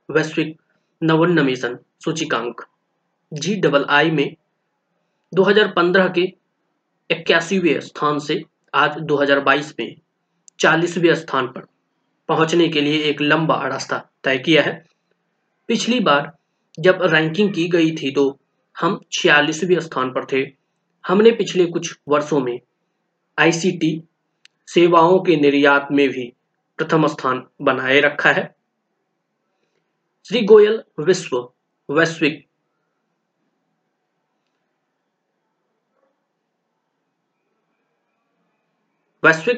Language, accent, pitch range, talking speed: Hindi, native, 145-180 Hz, 80 wpm